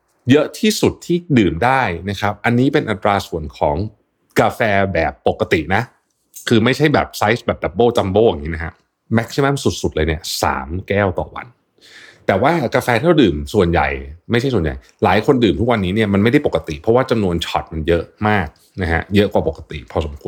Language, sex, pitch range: Thai, male, 80-110 Hz